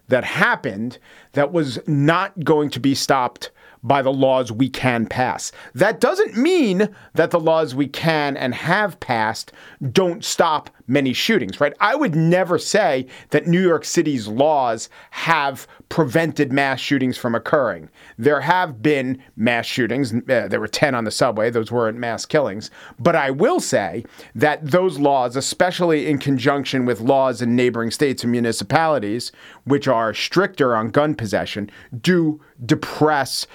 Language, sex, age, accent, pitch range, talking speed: English, male, 40-59, American, 120-150 Hz, 155 wpm